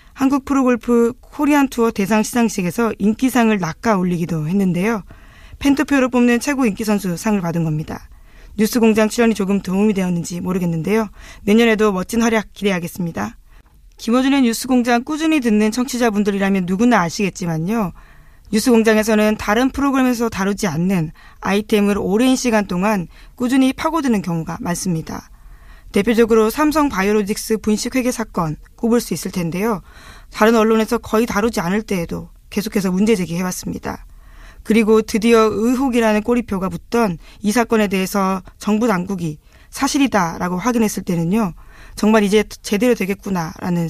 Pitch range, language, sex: 190-235 Hz, Korean, female